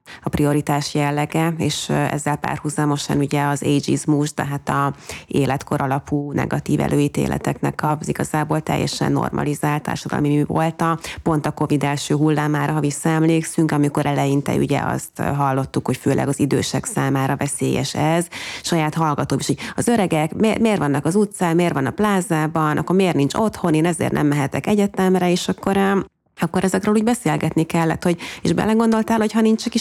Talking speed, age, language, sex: 160 wpm, 30-49, Hungarian, female